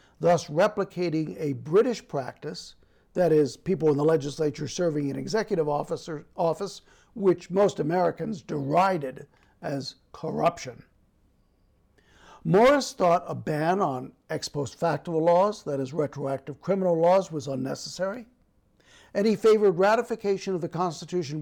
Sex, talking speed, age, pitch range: male, 125 wpm, 60-79, 145-190 Hz